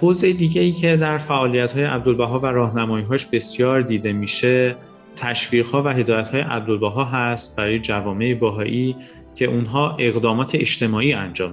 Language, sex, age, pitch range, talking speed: Persian, male, 30-49, 105-125 Hz, 150 wpm